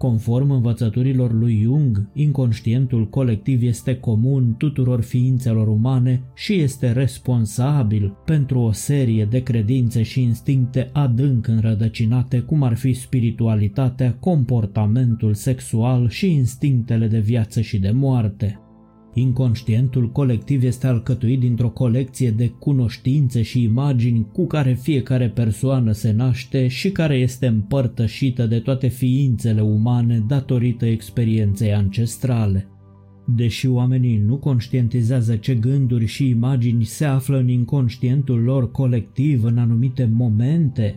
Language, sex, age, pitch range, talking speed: Romanian, male, 20-39, 115-130 Hz, 115 wpm